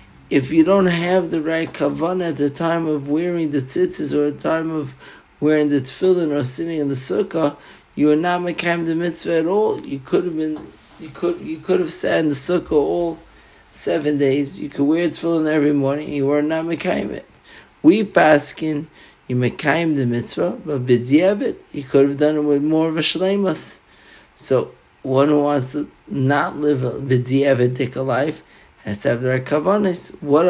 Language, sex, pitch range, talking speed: English, male, 135-165 Hz, 195 wpm